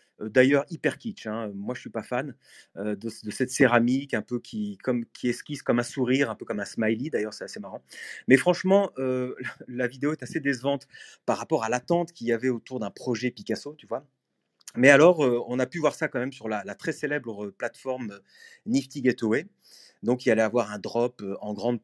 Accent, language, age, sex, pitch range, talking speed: French, French, 30-49, male, 115-160 Hz, 215 wpm